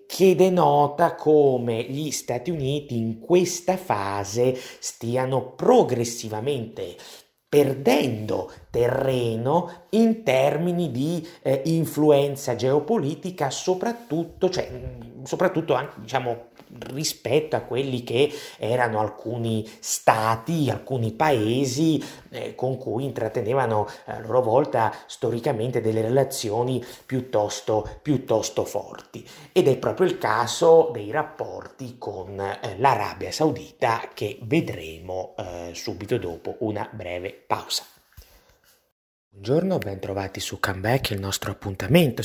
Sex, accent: male, native